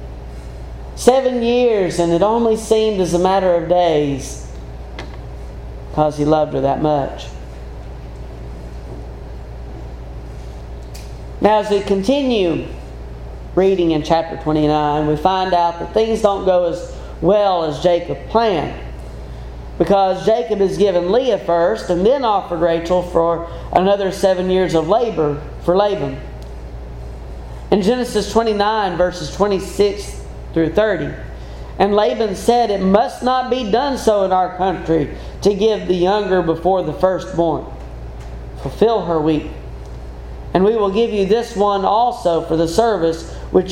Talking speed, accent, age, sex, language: 130 wpm, American, 40-59, male, English